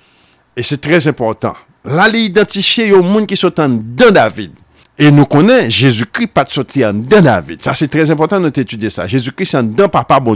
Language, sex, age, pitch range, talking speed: French, male, 50-69, 120-170 Hz, 210 wpm